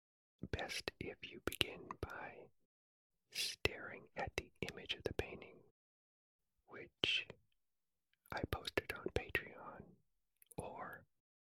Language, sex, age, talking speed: English, male, 40-59, 90 wpm